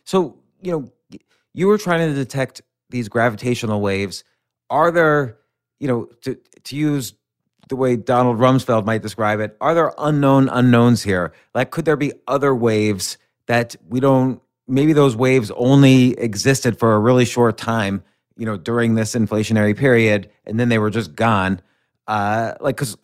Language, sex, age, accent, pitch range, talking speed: English, male, 30-49, American, 110-135 Hz, 165 wpm